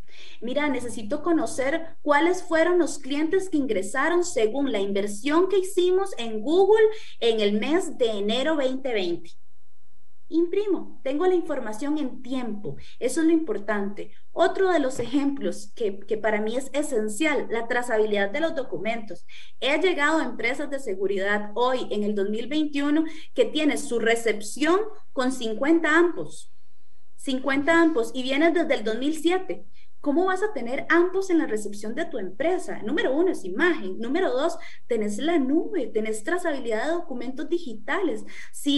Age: 30-49